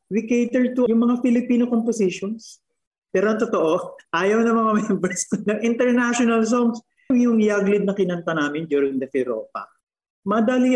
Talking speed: 135 wpm